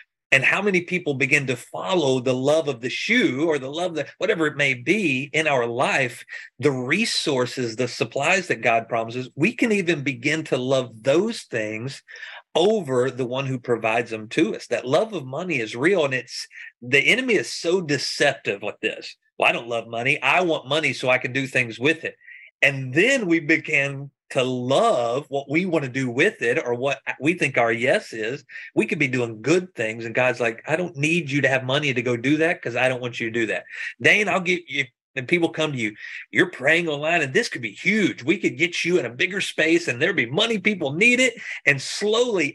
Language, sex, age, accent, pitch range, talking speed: English, male, 40-59, American, 125-165 Hz, 225 wpm